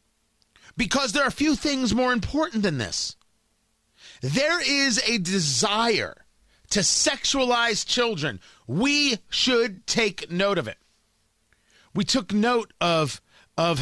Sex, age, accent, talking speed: male, 40-59, American, 115 wpm